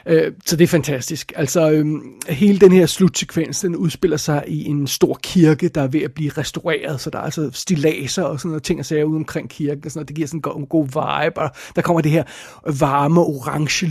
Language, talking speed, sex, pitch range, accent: Danish, 235 wpm, male, 150-170 Hz, native